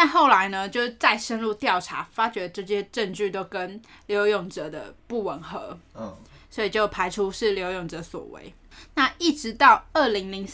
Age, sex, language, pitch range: 10-29, female, Chinese, 195-255 Hz